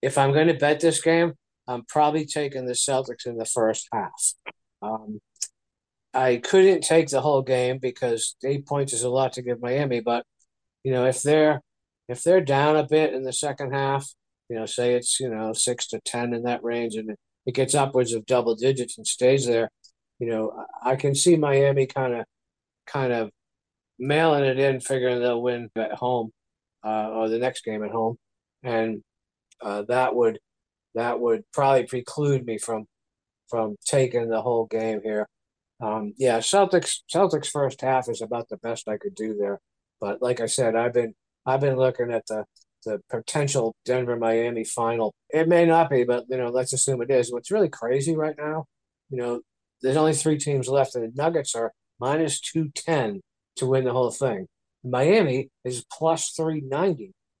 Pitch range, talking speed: 115-140 Hz, 185 wpm